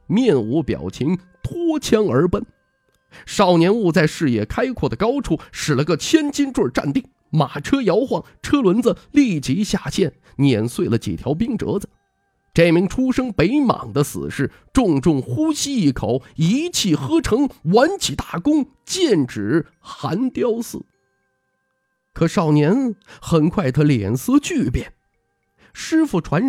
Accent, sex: native, male